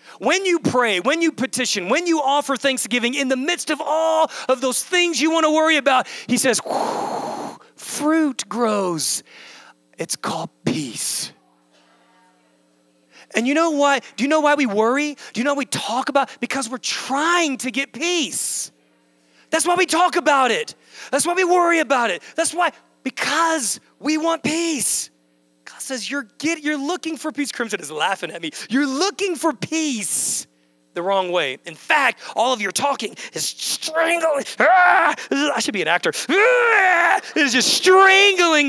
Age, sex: 30-49, male